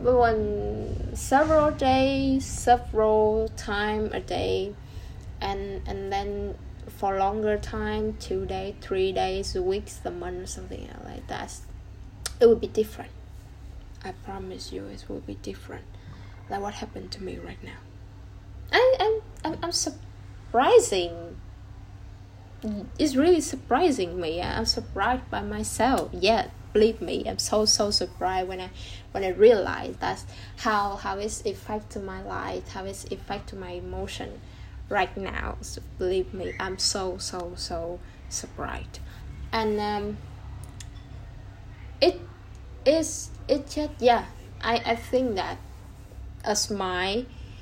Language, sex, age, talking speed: Vietnamese, female, 10-29, 135 wpm